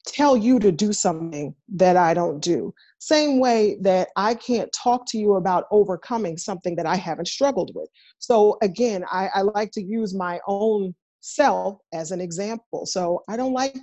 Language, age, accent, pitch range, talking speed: English, 30-49, American, 175-225 Hz, 180 wpm